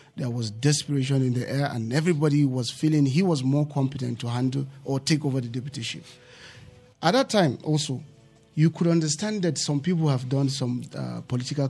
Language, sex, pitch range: English, male, 125-150 Hz